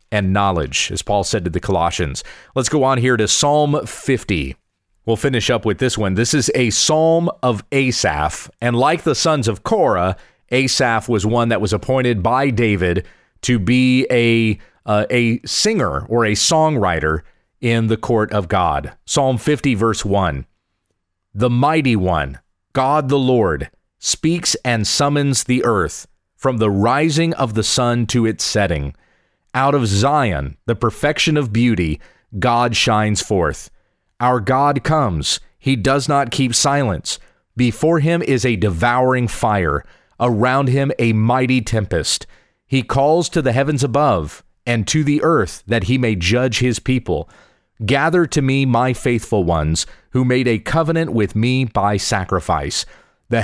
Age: 40-59